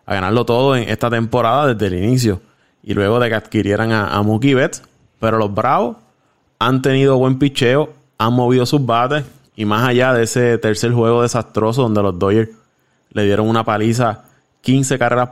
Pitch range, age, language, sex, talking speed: 110-135 Hz, 20-39, Spanish, male, 180 wpm